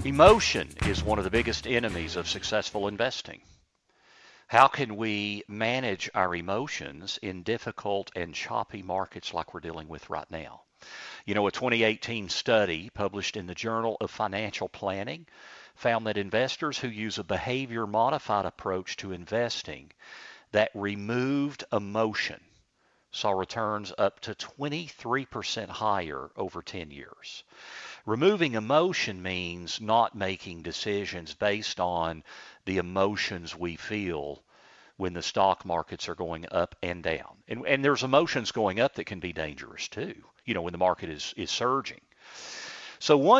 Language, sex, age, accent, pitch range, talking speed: English, male, 50-69, American, 95-125 Hz, 140 wpm